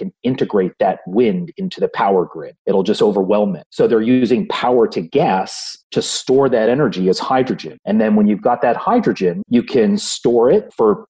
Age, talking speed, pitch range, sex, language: 30-49, 190 wpm, 105-145 Hz, male, English